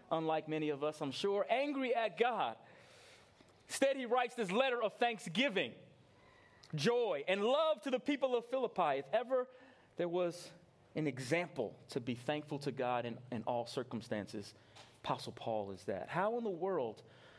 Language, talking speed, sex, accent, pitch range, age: English, 160 wpm, male, American, 135-205 Hz, 30-49